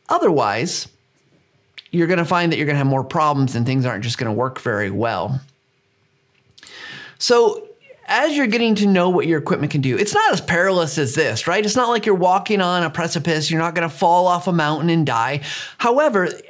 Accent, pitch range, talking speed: American, 145-200 Hz, 195 wpm